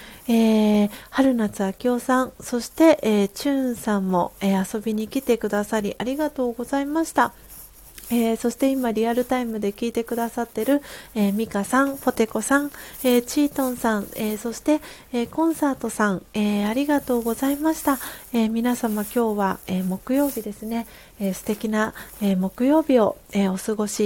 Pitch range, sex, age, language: 215-265 Hz, female, 30-49, Japanese